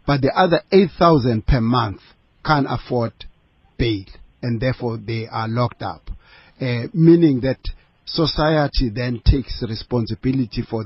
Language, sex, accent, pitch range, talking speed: English, male, South African, 115-140 Hz, 125 wpm